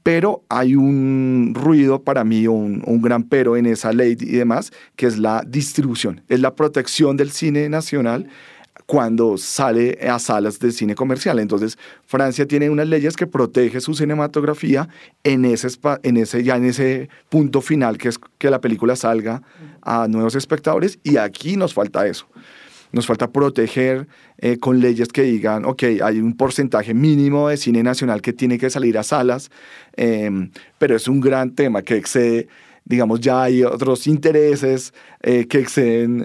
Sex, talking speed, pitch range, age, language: male, 170 wpm, 120-150 Hz, 40-59, English